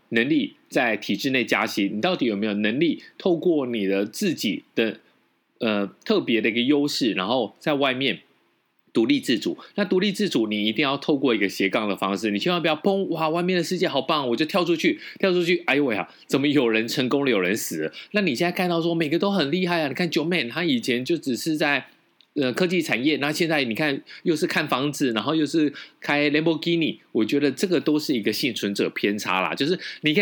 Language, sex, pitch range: Chinese, male, 125-185 Hz